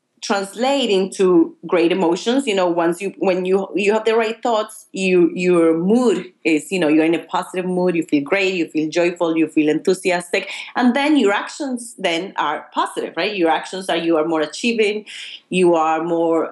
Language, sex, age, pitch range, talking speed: English, female, 30-49, 160-195 Hz, 195 wpm